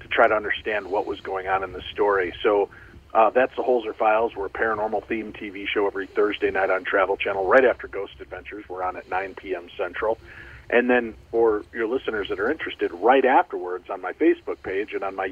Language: English